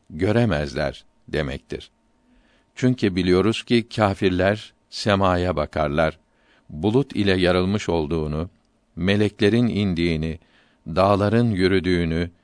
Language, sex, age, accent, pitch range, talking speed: Turkish, male, 60-79, native, 85-105 Hz, 75 wpm